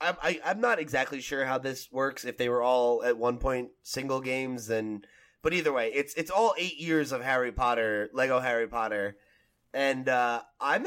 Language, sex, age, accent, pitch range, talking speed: English, male, 20-39, American, 120-160 Hz, 195 wpm